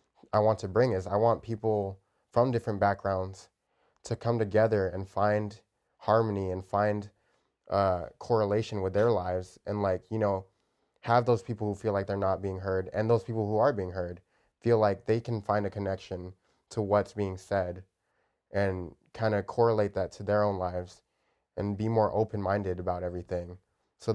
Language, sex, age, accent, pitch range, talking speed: English, male, 20-39, American, 95-110 Hz, 180 wpm